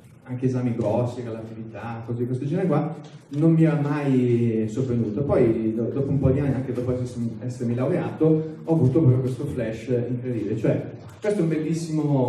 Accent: native